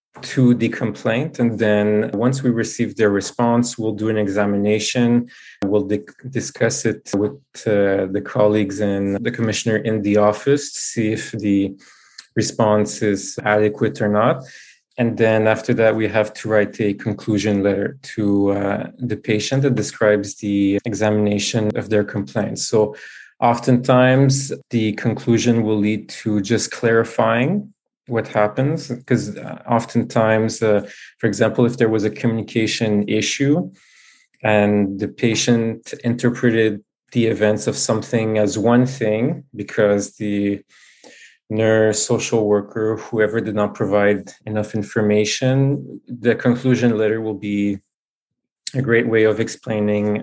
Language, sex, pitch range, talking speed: English, male, 105-120 Hz, 135 wpm